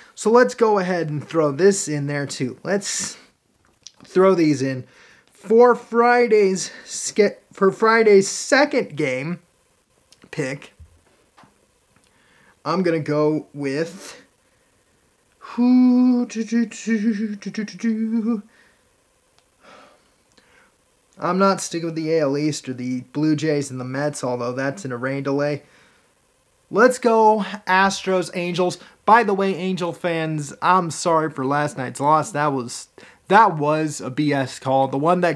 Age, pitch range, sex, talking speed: 30-49, 145-200 Hz, male, 120 wpm